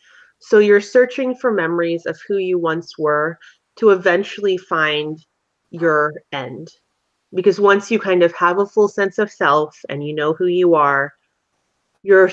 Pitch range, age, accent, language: 160-200 Hz, 30-49, American, English